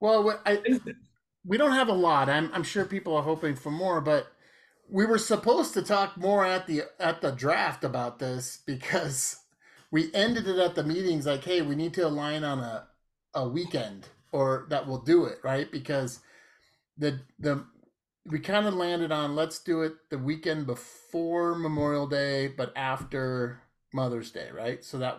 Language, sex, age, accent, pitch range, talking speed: English, male, 30-49, American, 125-165 Hz, 175 wpm